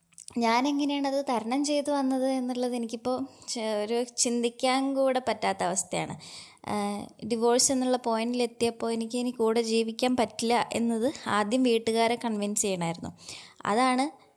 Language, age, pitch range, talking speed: Malayalam, 20-39, 210-250 Hz, 110 wpm